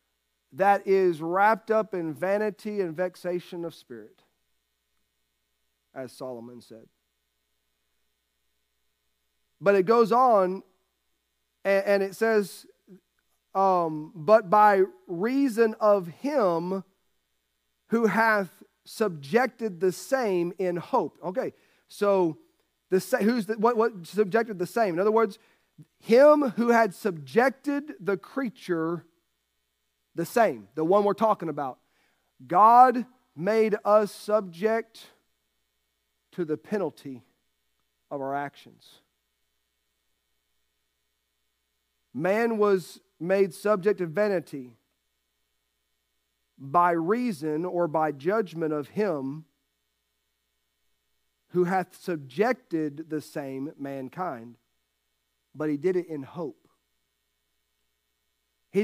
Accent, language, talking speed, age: American, English, 95 wpm, 40-59